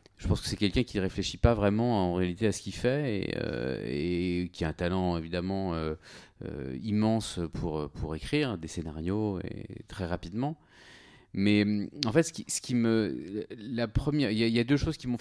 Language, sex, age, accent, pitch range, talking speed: French, male, 30-49, French, 90-115 Hz, 195 wpm